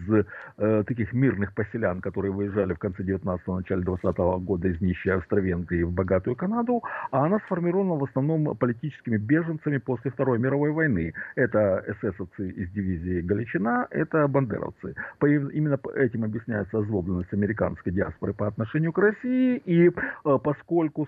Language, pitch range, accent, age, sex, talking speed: Russian, 95-140 Hz, native, 50-69, male, 135 wpm